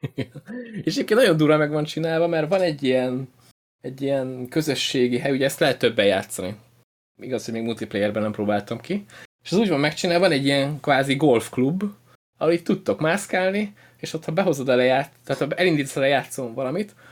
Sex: male